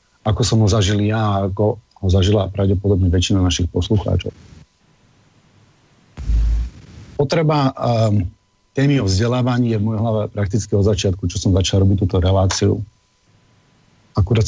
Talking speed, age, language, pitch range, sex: 135 wpm, 40-59, Slovak, 95-110 Hz, male